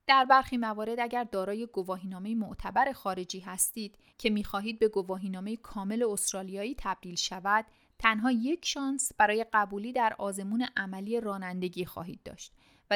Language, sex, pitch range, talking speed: Persian, female, 195-250 Hz, 135 wpm